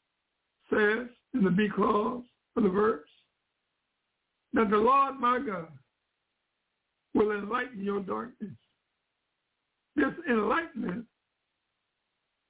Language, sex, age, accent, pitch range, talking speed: English, male, 60-79, American, 205-245 Hz, 90 wpm